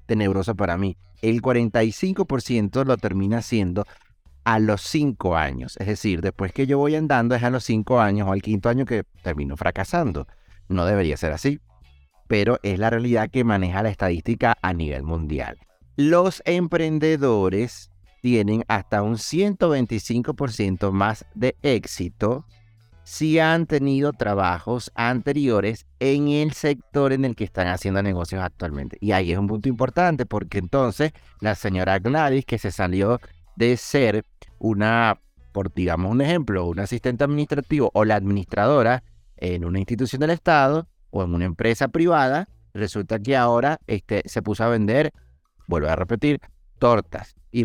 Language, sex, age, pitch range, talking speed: Spanish, male, 30-49, 95-135 Hz, 150 wpm